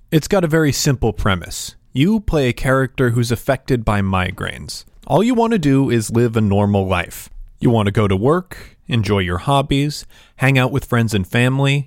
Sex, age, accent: male, 30-49, American